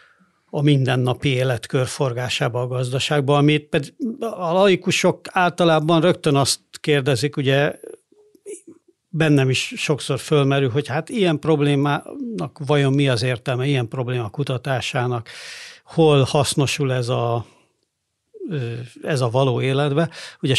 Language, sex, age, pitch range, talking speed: Hungarian, male, 60-79, 130-160 Hz, 115 wpm